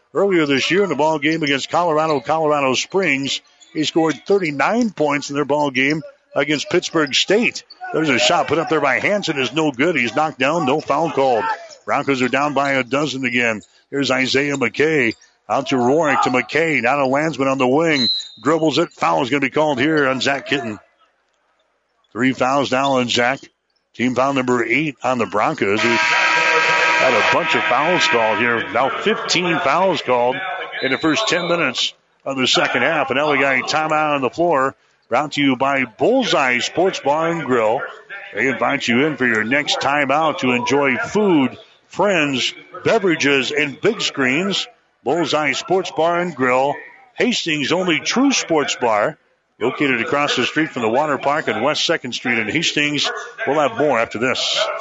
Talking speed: 185 wpm